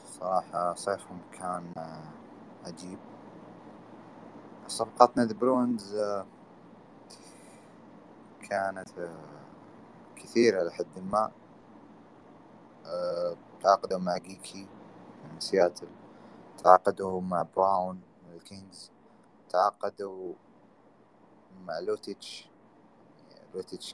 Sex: male